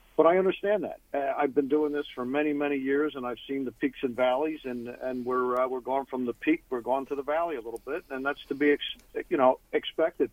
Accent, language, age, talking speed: American, English, 50-69, 255 wpm